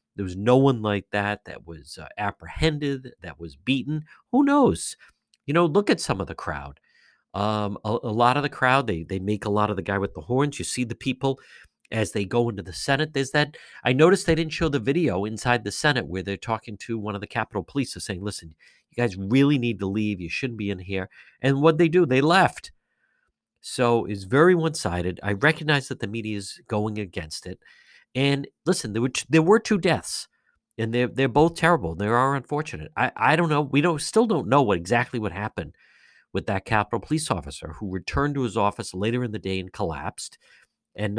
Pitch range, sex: 100-135 Hz, male